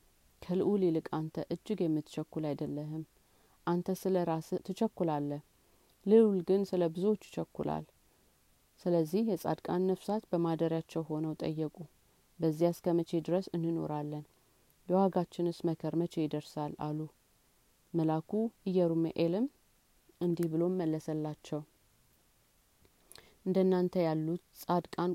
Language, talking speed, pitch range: Amharic, 85 wpm, 155-180 Hz